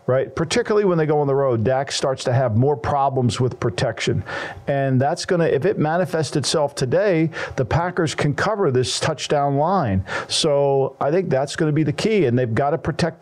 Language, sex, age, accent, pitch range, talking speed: English, male, 50-69, American, 130-160 Hz, 200 wpm